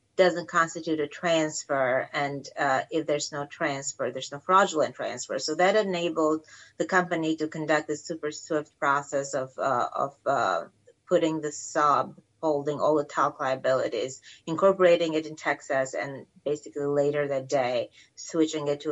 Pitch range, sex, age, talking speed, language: 150-180 Hz, female, 30-49, 155 wpm, English